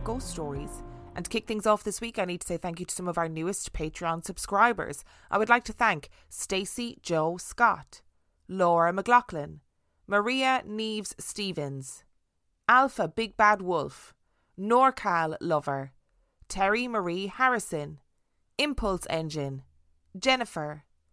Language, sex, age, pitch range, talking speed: English, female, 20-39, 160-215 Hz, 130 wpm